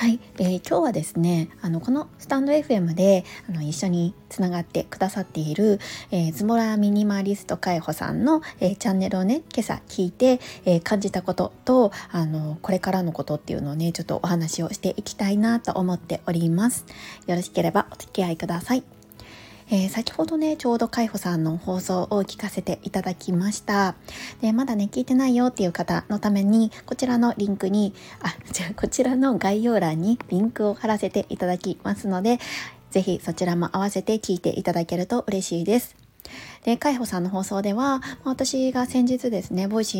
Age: 20-39